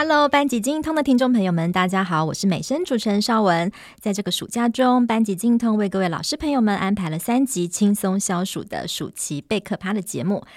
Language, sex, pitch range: Chinese, male, 180-230 Hz